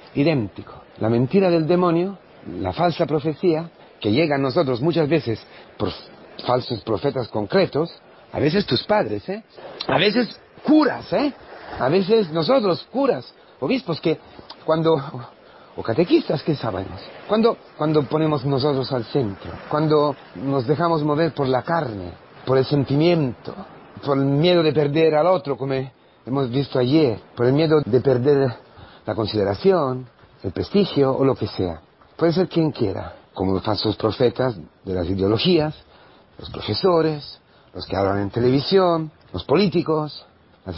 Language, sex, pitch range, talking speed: Spanish, male, 110-155 Hz, 145 wpm